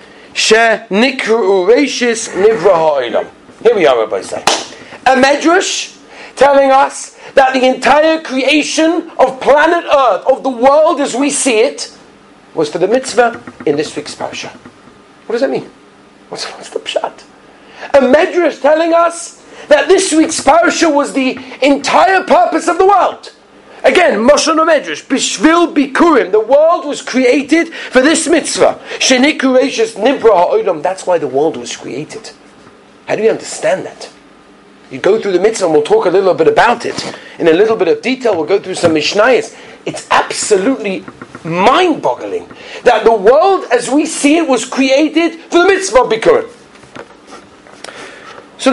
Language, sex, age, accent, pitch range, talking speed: English, male, 40-59, British, 260-345 Hz, 150 wpm